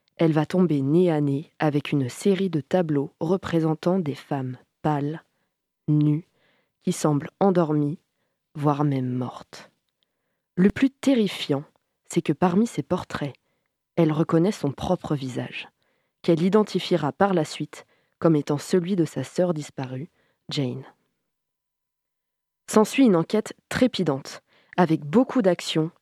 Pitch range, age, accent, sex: 155-195 Hz, 20-39, French, female